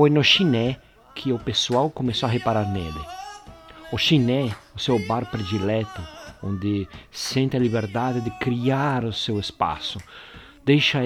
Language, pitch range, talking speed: Portuguese, 110-135 Hz, 140 wpm